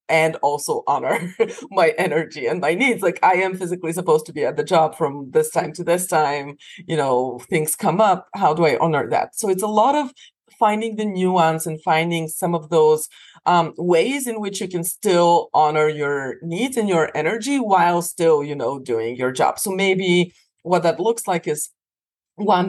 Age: 30-49